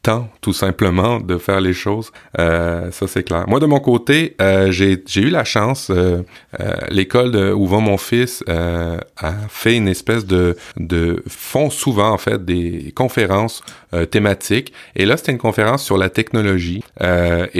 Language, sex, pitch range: French, male, 95-115 Hz